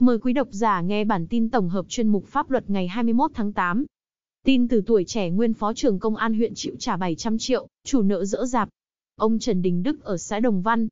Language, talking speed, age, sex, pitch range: Vietnamese, 235 wpm, 20-39, female, 205-245 Hz